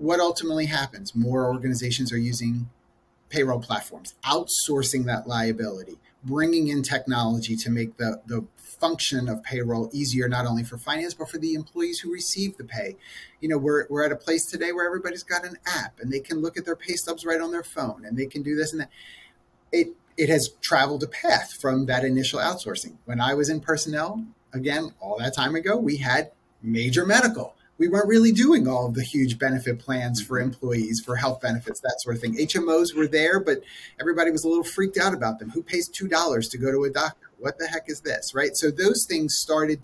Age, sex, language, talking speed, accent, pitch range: 30-49, male, English, 210 wpm, American, 125-165 Hz